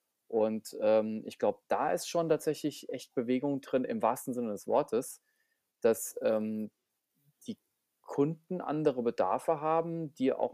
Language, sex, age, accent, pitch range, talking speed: German, male, 30-49, German, 120-145 Hz, 140 wpm